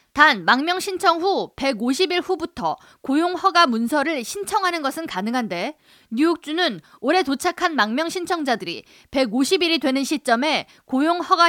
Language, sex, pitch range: Korean, female, 250-340 Hz